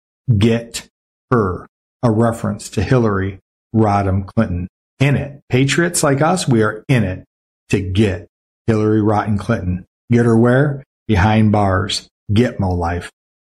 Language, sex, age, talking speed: English, male, 40-59, 135 wpm